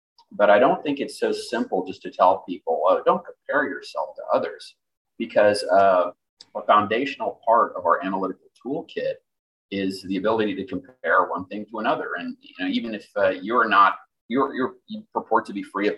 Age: 30-49